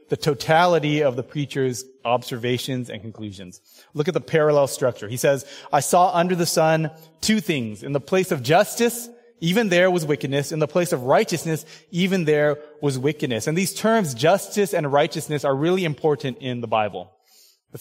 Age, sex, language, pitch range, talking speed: 20-39, male, English, 140-170 Hz, 180 wpm